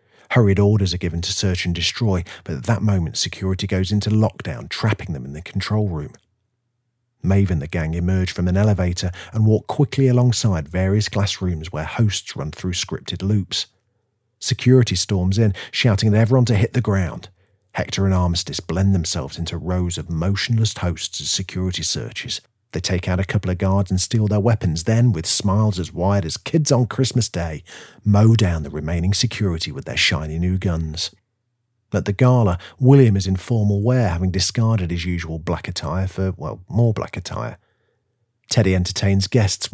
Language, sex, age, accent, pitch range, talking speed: English, male, 40-59, British, 90-115 Hz, 180 wpm